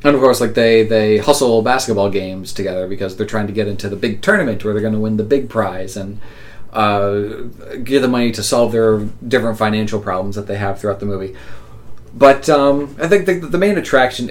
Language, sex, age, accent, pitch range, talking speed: English, male, 30-49, American, 105-115 Hz, 220 wpm